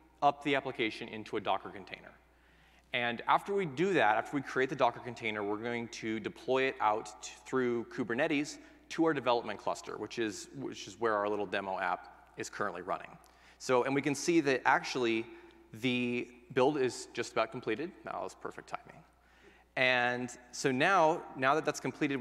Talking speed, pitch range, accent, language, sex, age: 175 wpm, 110-145 Hz, American, English, male, 30-49